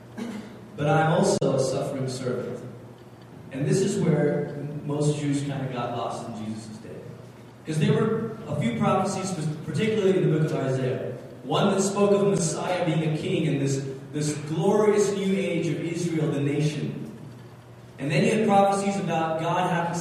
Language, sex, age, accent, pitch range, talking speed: English, male, 20-39, American, 140-185 Hz, 175 wpm